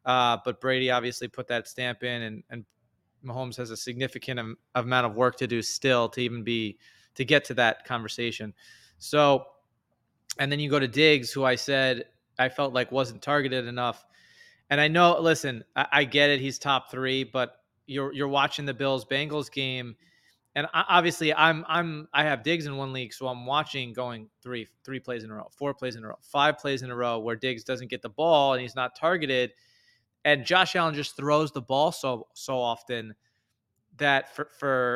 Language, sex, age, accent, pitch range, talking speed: English, male, 20-39, American, 120-145 Hz, 200 wpm